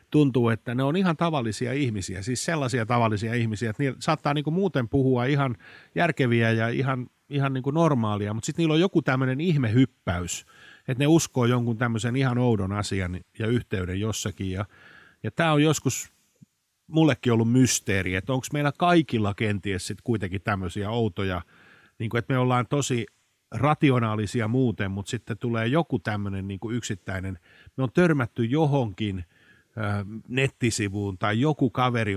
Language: Finnish